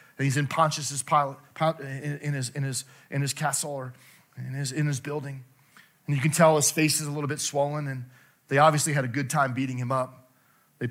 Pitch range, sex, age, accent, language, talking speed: 140-170 Hz, male, 40-59, American, English, 215 wpm